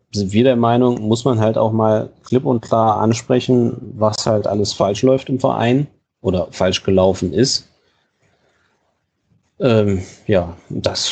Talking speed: 145 wpm